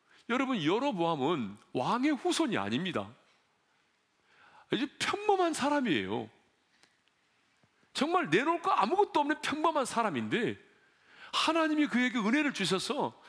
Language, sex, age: Korean, male, 40-59